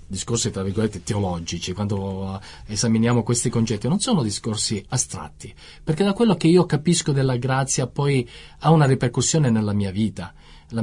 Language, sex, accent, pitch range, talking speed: Italian, male, native, 100-140 Hz, 155 wpm